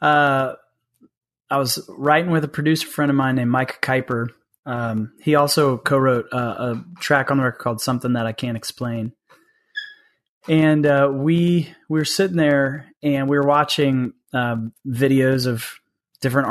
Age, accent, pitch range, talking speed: 30-49, American, 125-155 Hz, 165 wpm